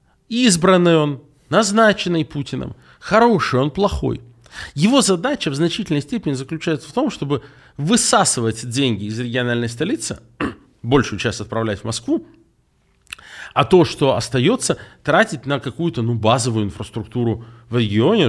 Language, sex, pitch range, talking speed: Russian, male, 115-160 Hz, 125 wpm